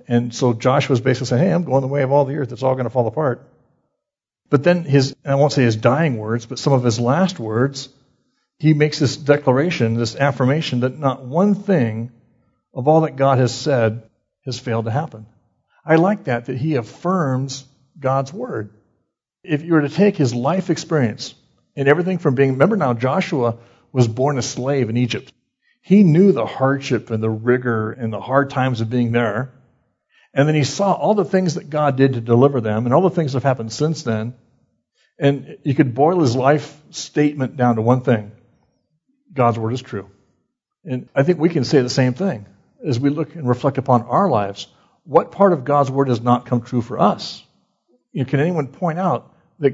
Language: English